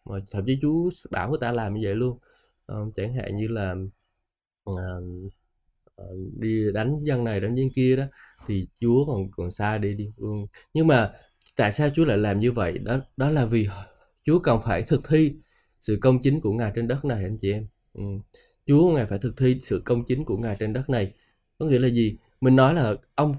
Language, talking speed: Vietnamese, 210 wpm